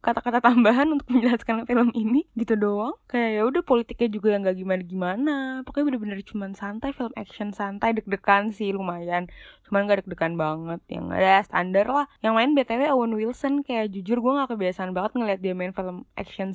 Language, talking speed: Indonesian, 180 wpm